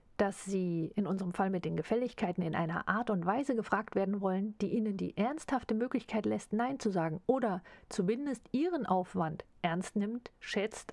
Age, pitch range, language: 50-69, 180-230 Hz, German